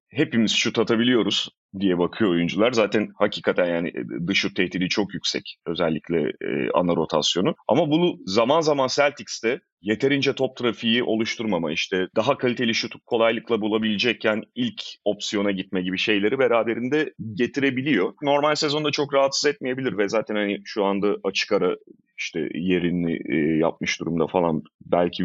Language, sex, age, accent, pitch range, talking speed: Turkish, male, 30-49, native, 100-140 Hz, 135 wpm